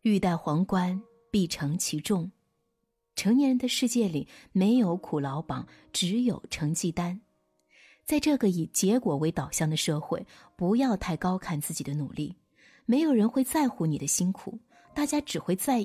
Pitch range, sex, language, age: 155-230 Hz, female, Chinese, 30-49